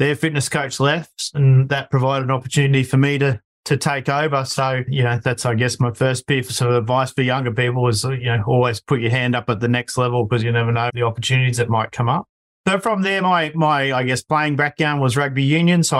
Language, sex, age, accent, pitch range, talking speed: English, male, 30-49, Australian, 120-140 Hz, 240 wpm